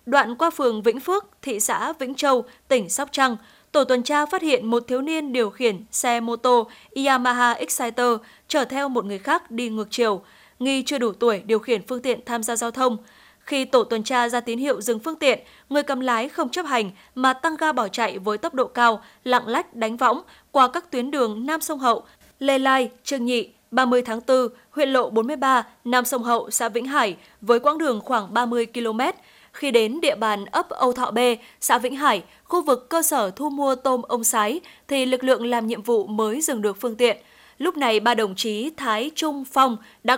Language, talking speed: Vietnamese, 215 wpm